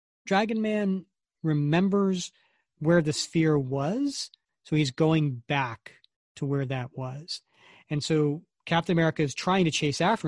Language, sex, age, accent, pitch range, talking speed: English, male, 40-59, American, 140-165 Hz, 140 wpm